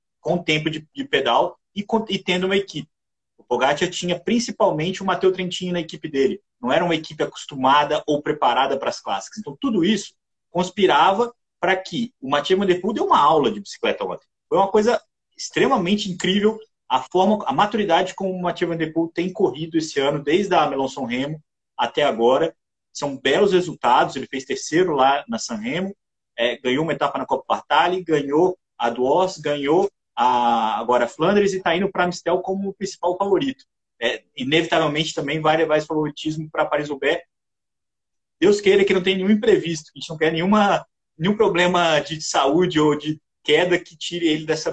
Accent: Brazilian